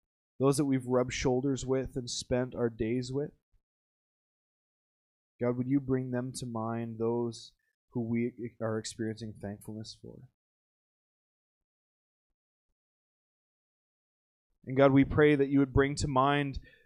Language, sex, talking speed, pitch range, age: English, male, 125 wpm, 110-130 Hz, 20-39